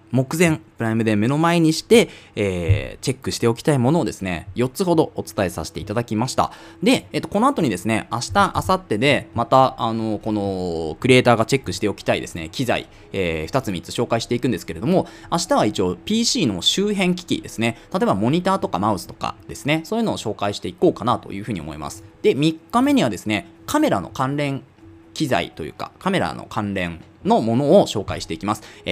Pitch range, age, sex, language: 100-165 Hz, 20-39, male, Japanese